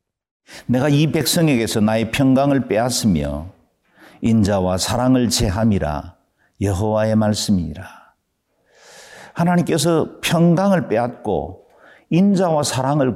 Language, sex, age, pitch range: Korean, male, 50-69, 95-130 Hz